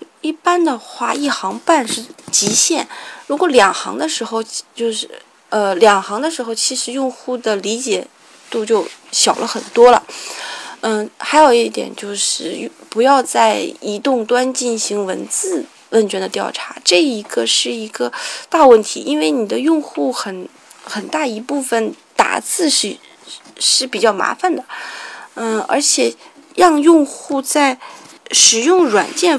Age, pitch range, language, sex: 20-39, 225-300 Hz, Chinese, female